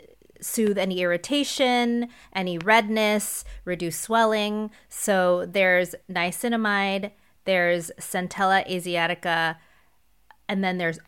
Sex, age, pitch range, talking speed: female, 20-39, 165-195 Hz, 85 wpm